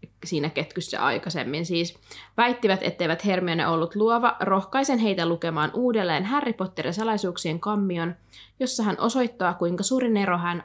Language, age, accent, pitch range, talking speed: Finnish, 20-39, native, 175-215 Hz, 135 wpm